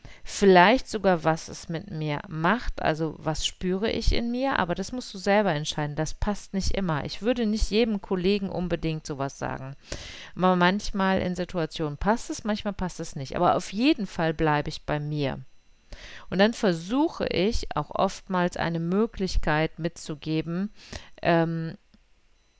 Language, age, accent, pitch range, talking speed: German, 50-69, German, 165-210 Hz, 155 wpm